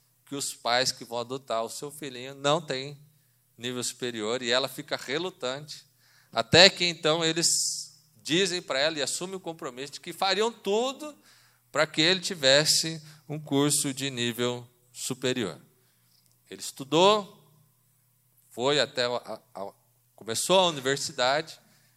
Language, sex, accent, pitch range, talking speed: Portuguese, male, Brazilian, 125-155 Hz, 140 wpm